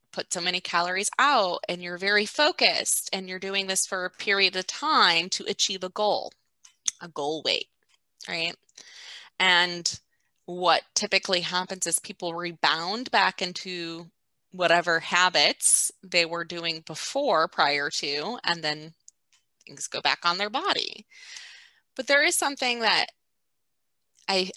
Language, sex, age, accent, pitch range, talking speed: English, female, 20-39, American, 180-235 Hz, 140 wpm